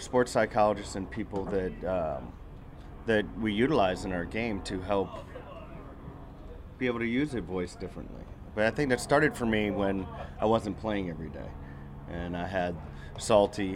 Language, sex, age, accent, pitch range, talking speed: English, male, 30-49, American, 90-105 Hz, 165 wpm